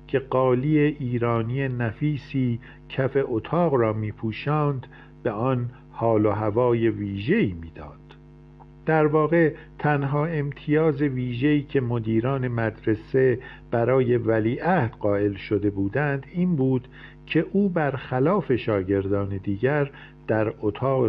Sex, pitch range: male, 110-140 Hz